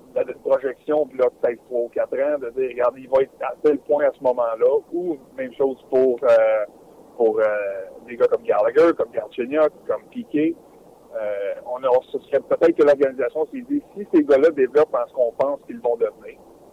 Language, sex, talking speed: French, male, 205 wpm